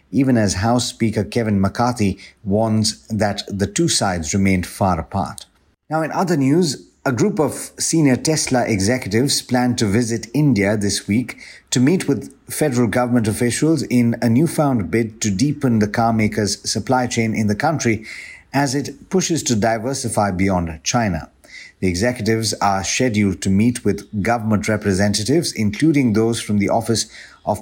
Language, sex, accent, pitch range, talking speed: English, male, Indian, 100-130 Hz, 155 wpm